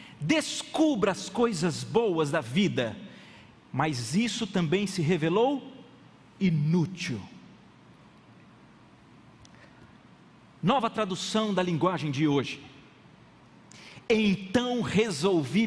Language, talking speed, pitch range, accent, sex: Portuguese, 75 wpm, 135-215 Hz, Brazilian, male